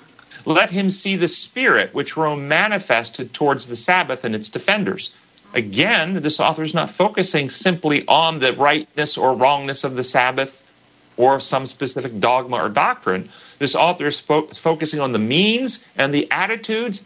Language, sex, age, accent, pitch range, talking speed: English, male, 40-59, American, 130-185 Hz, 160 wpm